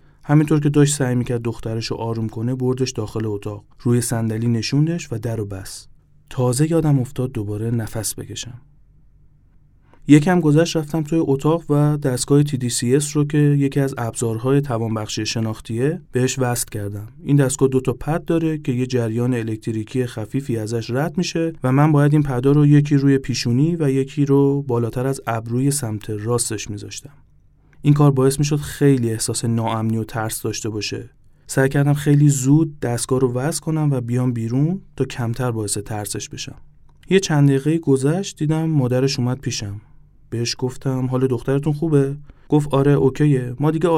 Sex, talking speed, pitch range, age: male, 165 wpm, 115-145 Hz, 30-49